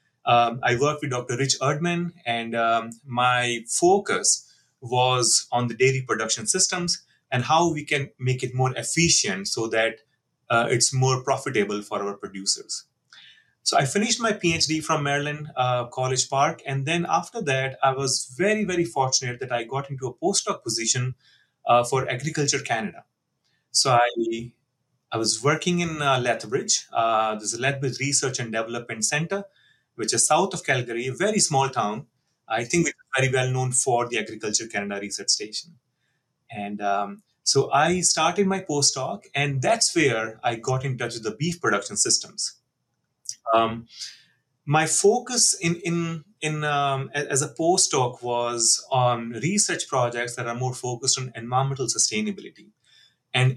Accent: Indian